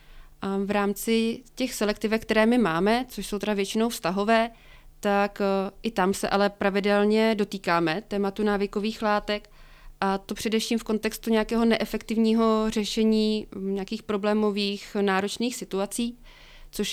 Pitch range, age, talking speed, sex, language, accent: 195-220 Hz, 30-49, 130 wpm, female, Czech, native